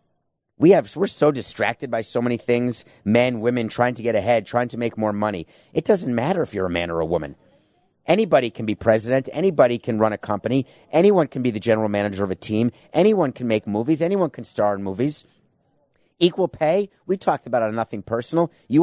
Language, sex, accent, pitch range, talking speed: English, male, American, 120-155 Hz, 215 wpm